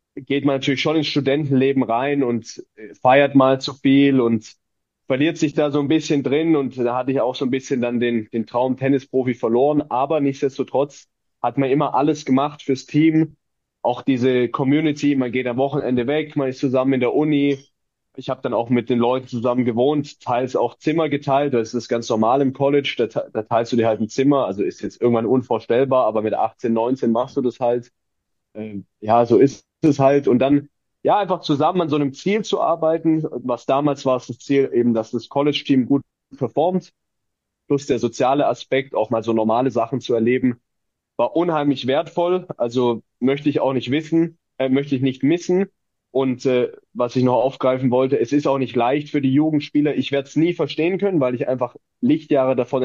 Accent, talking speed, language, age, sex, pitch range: German, 200 wpm, German, 20-39, male, 125-145 Hz